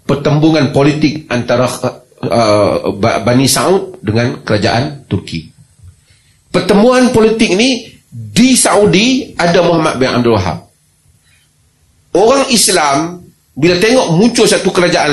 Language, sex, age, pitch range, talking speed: Malay, male, 30-49, 130-210 Hz, 105 wpm